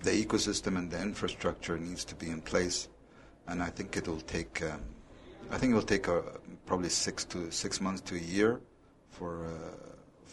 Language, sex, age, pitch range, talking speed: English, male, 50-69, 85-95 Hz, 190 wpm